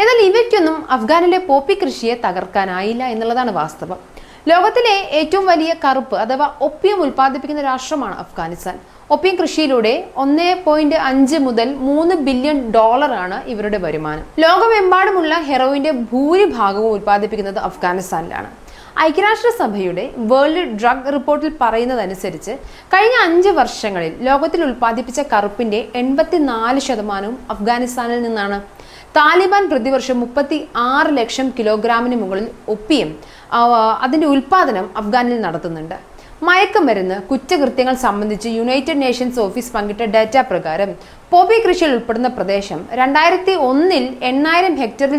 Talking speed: 105 wpm